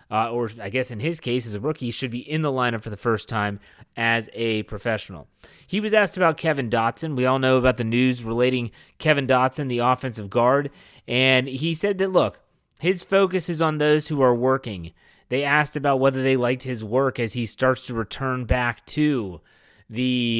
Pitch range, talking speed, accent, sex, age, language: 115-140 Hz, 205 wpm, American, male, 30-49, English